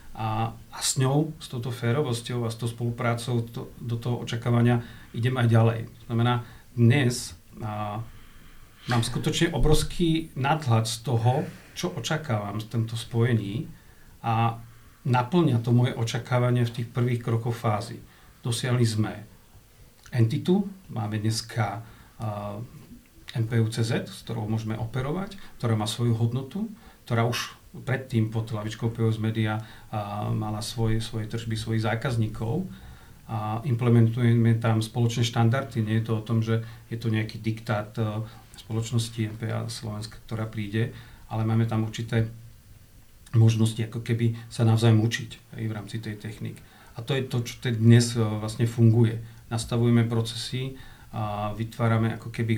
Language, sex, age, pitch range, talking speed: Czech, male, 40-59, 110-120 Hz, 140 wpm